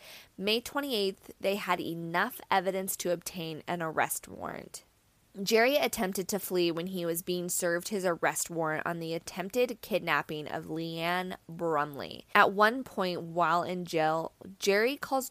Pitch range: 170-220 Hz